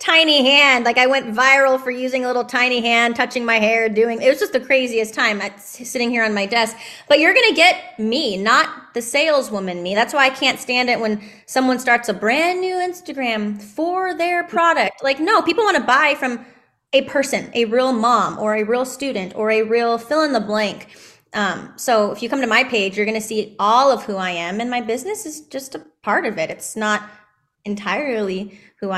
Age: 10-29